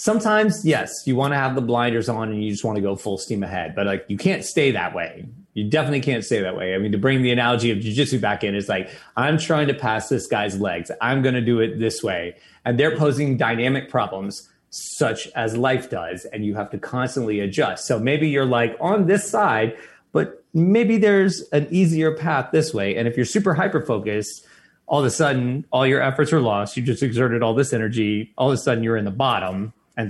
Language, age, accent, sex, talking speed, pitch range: English, 30-49, American, male, 230 wpm, 110-150 Hz